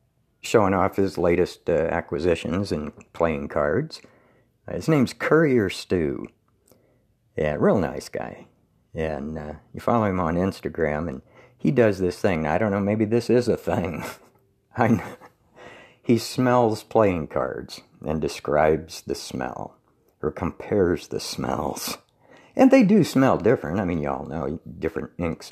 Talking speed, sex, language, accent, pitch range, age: 155 wpm, male, English, American, 85-120 Hz, 60-79